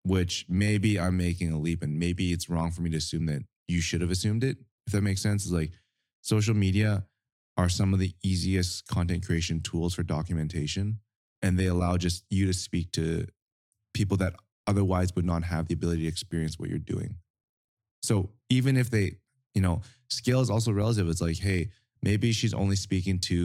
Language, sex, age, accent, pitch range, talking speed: English, male, 20-39, American, 85-105 Hz, 195 wpm